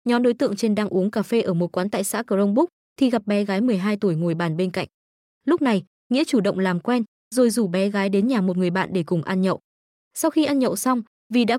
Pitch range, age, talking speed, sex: 190-245 Hz, 20-39, 265 wpm, female